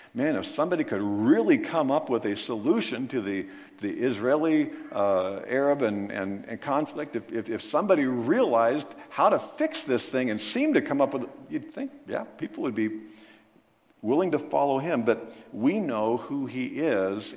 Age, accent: 50-69, American